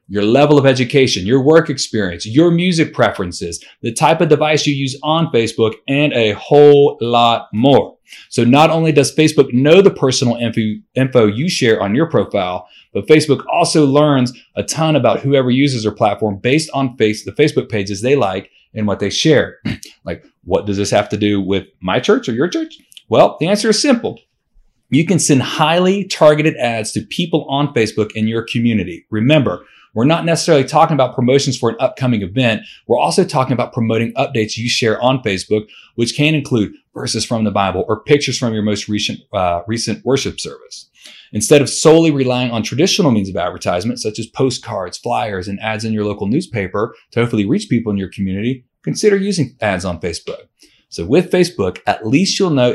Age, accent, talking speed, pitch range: 40-59, American, 190 wpm, 110-150 Hz